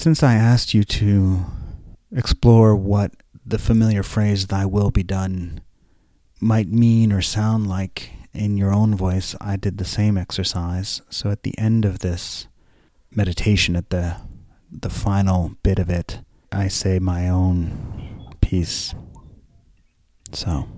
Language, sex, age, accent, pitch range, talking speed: English, male, 30-49, American, 90-110 Hz, 140 wpm